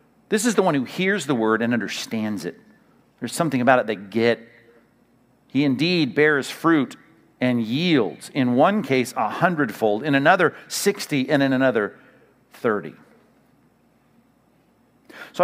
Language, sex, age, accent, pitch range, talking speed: English, male, 50-69, American, 120-180 Hz, 140 wpm